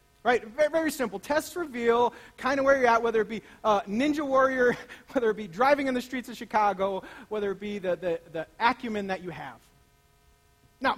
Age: 40-59